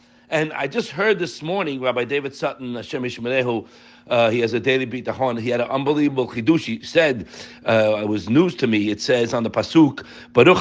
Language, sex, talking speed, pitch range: English, male, 200 wpm, 120-180 Hz